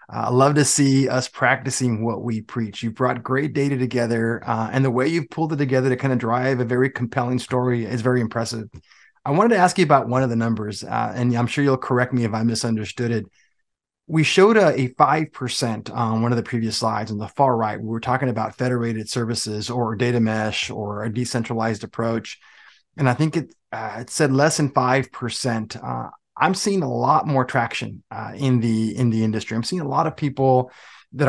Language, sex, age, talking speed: English, male, 20-39, 220 wpm